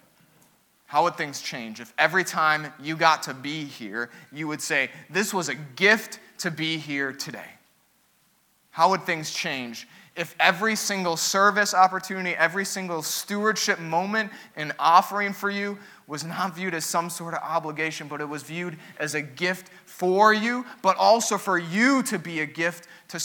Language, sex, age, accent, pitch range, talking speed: English, male, 20-39, American, 145-195 Hz, 170 wpm